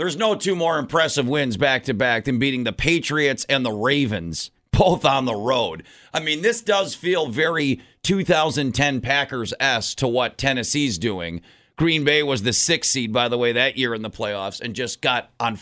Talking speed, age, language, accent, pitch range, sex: 185 wpm, 40-59, English, American, 120-160 Hz, male